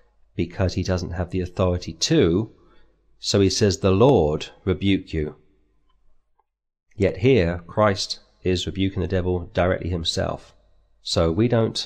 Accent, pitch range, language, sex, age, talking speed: British, 80-95 Hz, English, male, 30-49, 130 wpm